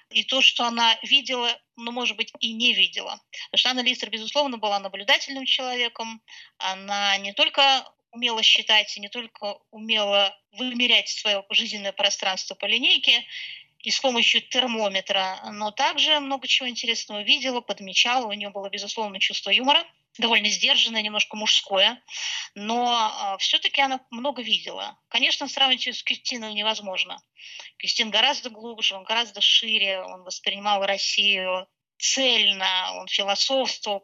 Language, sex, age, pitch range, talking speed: Russian, female, 20-39, 200-250 Hz, 130 wpm